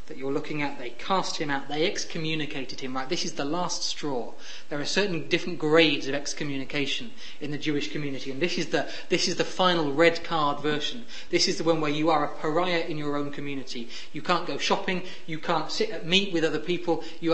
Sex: male